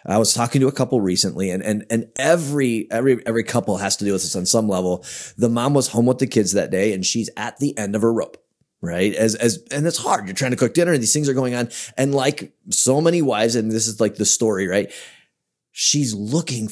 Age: 30-49